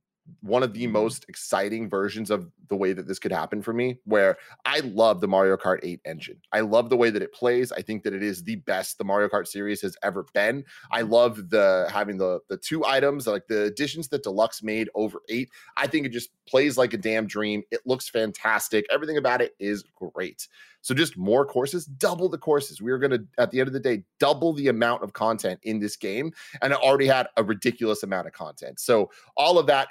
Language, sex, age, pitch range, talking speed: English, male, 30-49, 105-140 Hz, 225 wpm